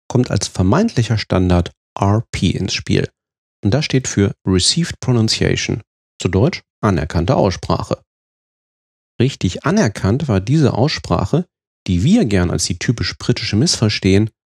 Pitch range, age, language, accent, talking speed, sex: 95-135 Hz, 40-59, German, German, 125 wpm, male